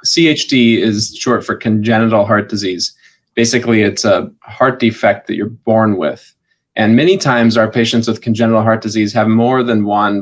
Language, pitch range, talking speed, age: English, 110-120 Hz, 170 wpm, 20-39